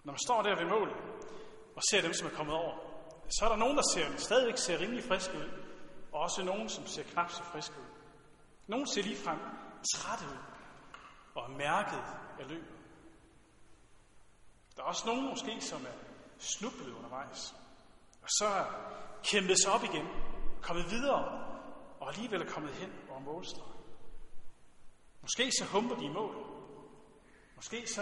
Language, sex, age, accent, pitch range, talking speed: Danish, male, 40-59, native, 160-205 Hz, 165 wpm